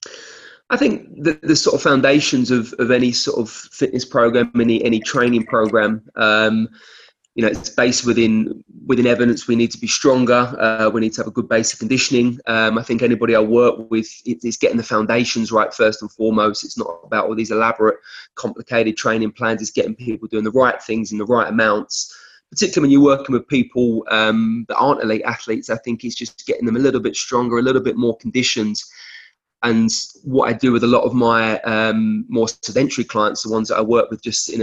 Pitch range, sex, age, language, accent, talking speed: 110-120 Hz, male, 20-39, English, British, 215 wpm